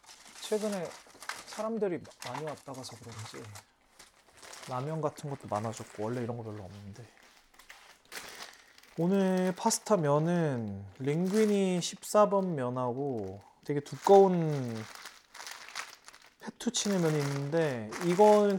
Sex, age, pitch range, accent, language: male, 30-49, 120-195 Hz, native, Korean